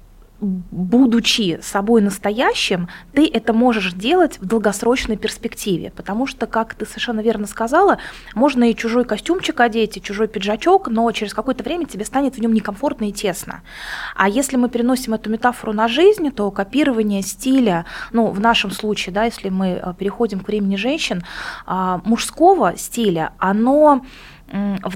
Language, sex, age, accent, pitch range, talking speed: Russian, female, 20-39, native, 195-240 Hz, 150 wpm